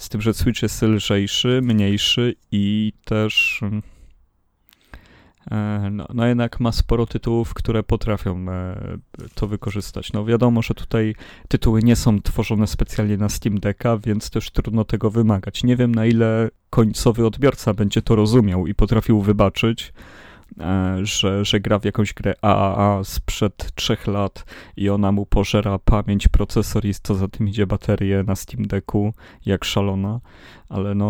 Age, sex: 30-49, male